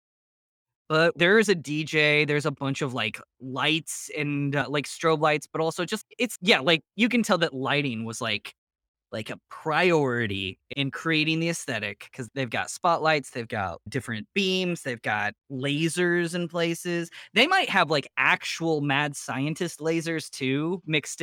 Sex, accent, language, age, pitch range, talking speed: male, American, English, 20-39, 135-165 Hz, 165 wpm